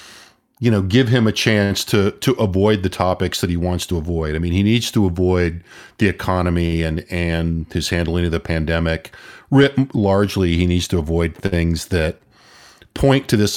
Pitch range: 85-105 Hz